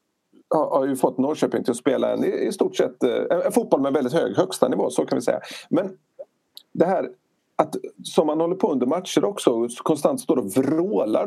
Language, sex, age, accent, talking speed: Swedish, male, 40-59, native, 220 wpm